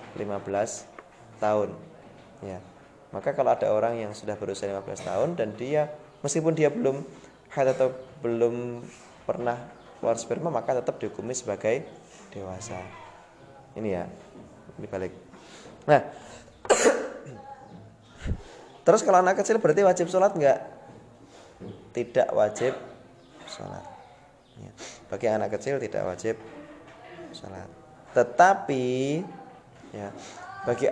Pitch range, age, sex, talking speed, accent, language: 115-170 Hz, 20-39, male, 105 wpm, native, Indonesian